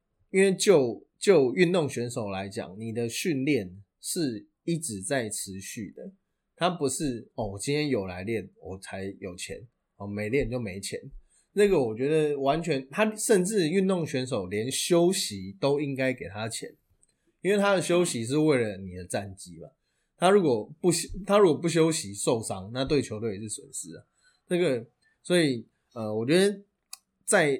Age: 20-39